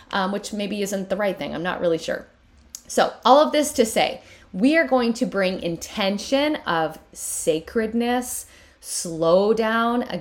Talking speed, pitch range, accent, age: 165 wpm, 185-260 Hz, American, 20-39